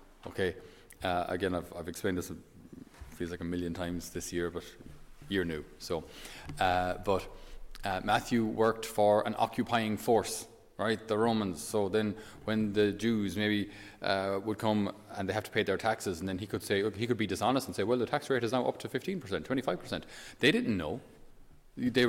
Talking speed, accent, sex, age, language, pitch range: 195 wpm, Irish, male, 30-49, English, 90-115 Hz